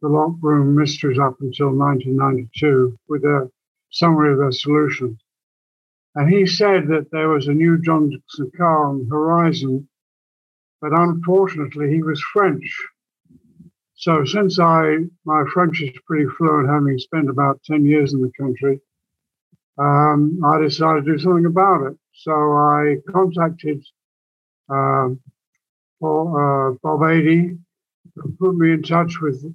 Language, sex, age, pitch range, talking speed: English, male, 60-79, 145-165 Hz, 140 wpm